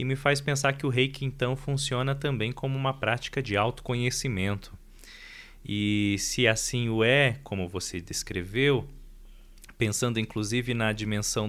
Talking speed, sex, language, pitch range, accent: 140 wpm, male, Portuguese, 100-140 Hz, Brazilian